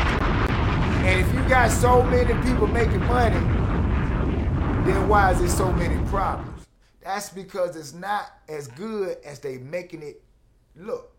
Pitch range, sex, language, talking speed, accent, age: 145-205 Hz, male, English, 145 wpm, American, 30-49